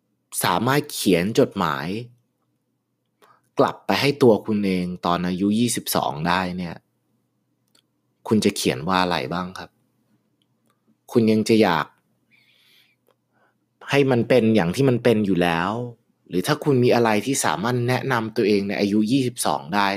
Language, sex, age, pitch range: Thai, male, 20-39, 95-130 Hz